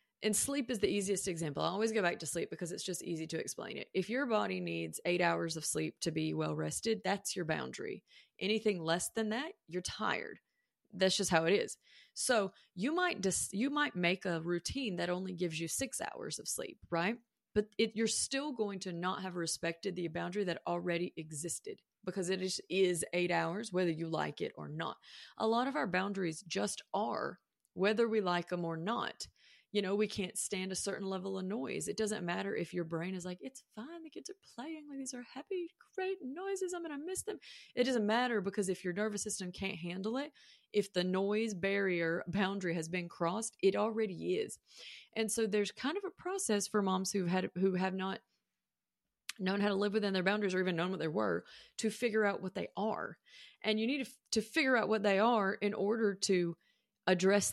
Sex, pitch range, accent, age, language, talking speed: female, 180-225 Hz, American, 30-49, English, 210 wpm